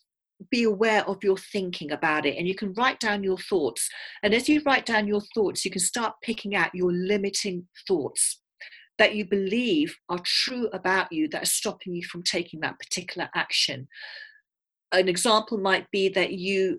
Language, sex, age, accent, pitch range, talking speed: English, female, 40-59, British, 175-225 Hz, 180 wpm